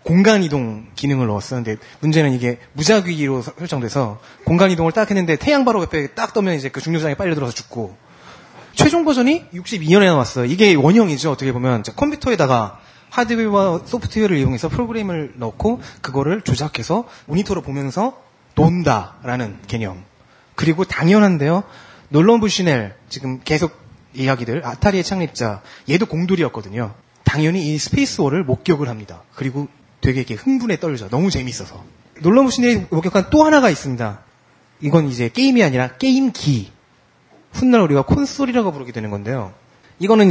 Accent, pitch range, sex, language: native, 125-195 Hz, male, Korean